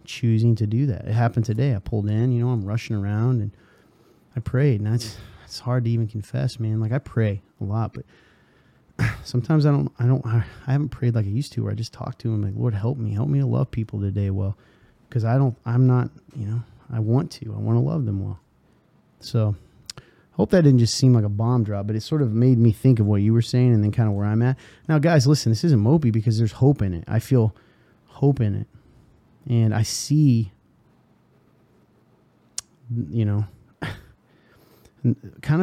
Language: English